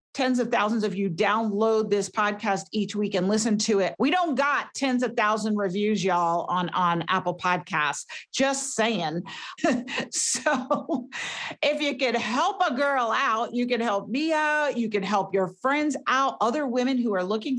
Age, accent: 50-69, American